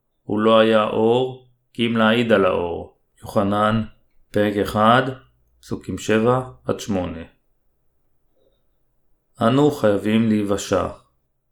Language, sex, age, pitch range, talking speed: Hebrew, male, 30-49, 105-110 Hz, 90 wpm